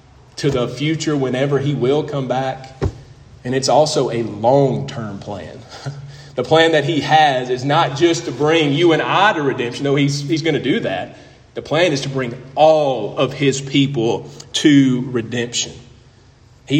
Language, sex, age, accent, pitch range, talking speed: English, male, 30-49, American, 135-165 Hz, 170 wpm